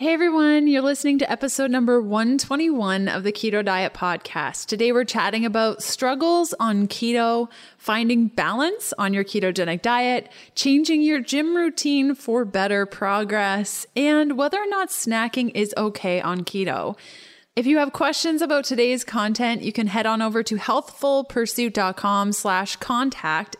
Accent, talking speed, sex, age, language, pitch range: American, 145 wpm, female, 20-39, English, 210-275 Hz